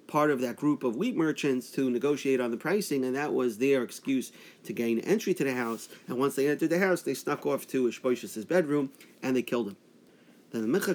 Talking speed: 230 wpm